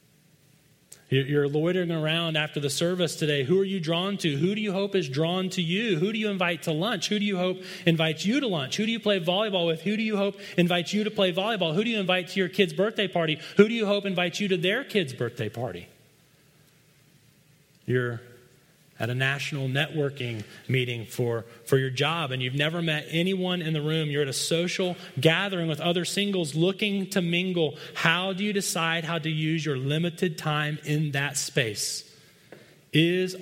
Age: 30-49